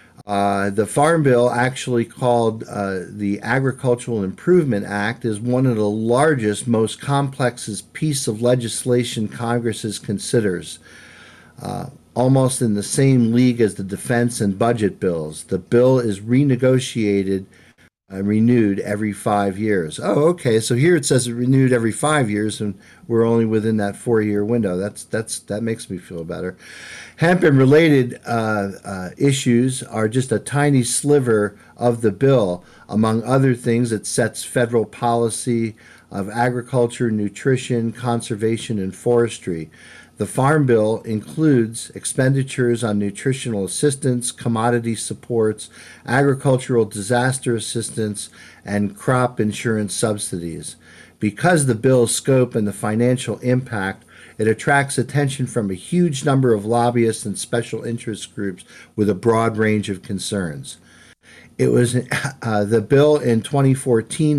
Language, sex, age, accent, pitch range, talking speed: English, male, 50-69, American, 105-125 Hz, 135 wpm